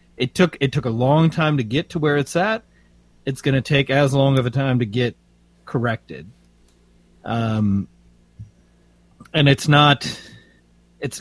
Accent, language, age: American, English, 30-49